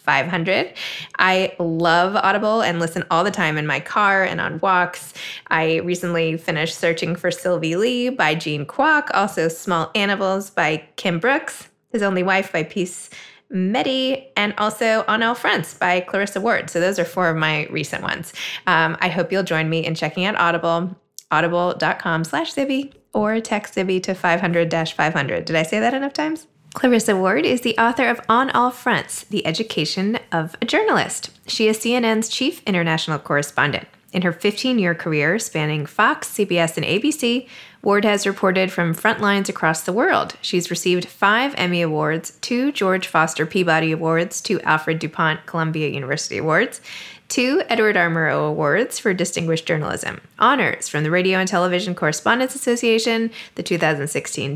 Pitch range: 160-215 Hz